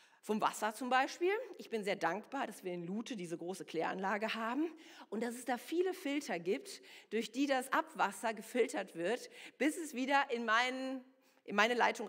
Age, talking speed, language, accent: 40-59, 185 wpm, German, German